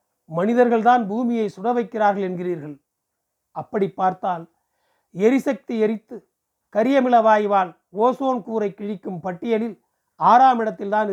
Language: Tamil